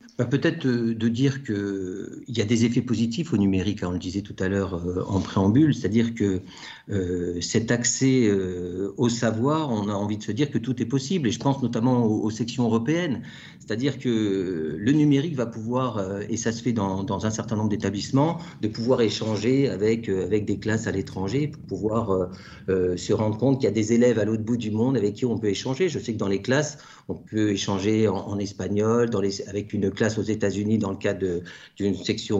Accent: French